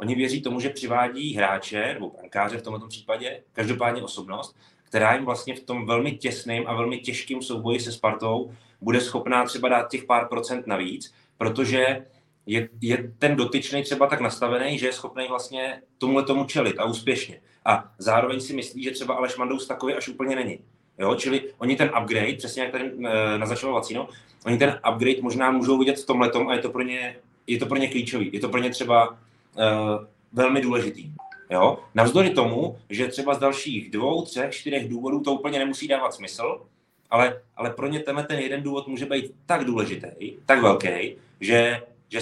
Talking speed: 180 wpm